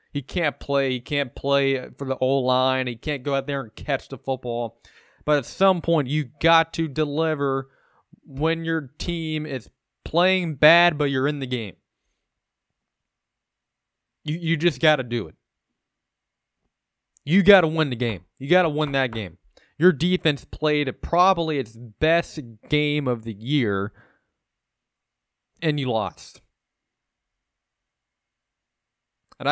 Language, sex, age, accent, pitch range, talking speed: English, male, 20-39, American, 125-155 Hz, 140 wpm